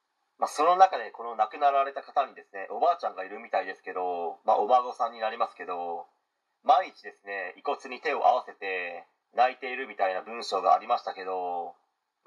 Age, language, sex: 40-59, Japanese, male